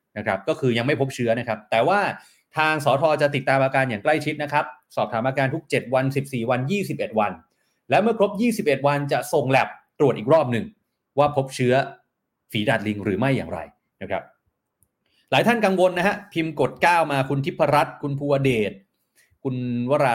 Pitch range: 130-160 Hz